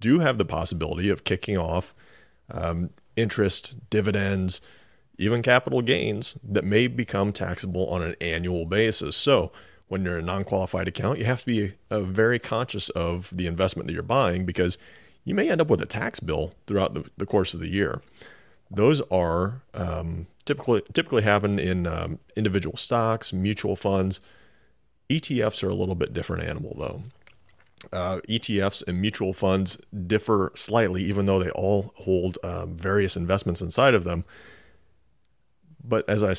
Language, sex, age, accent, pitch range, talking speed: English, male, 40-59, American, 90-105 Hz, 160 wpm